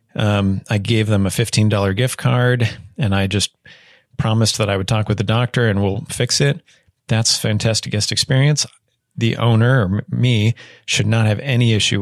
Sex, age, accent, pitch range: male, 30-49, American, 105-125 Hz